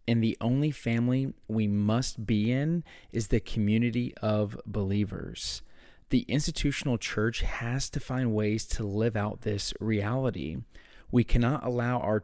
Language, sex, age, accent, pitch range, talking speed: English, male, 30-49, American, 100-120 Hz, 140 wpm